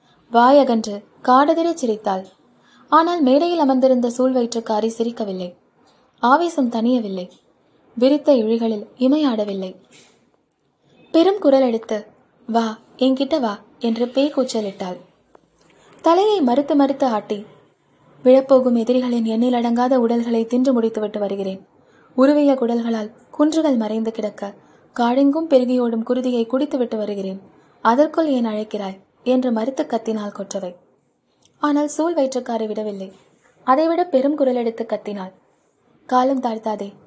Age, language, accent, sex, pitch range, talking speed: 20-39, Tamil, native, female, 215-265 Hz, 100 wpm